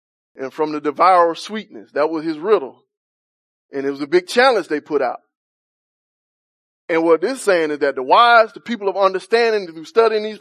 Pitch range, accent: 175-265 Hz, American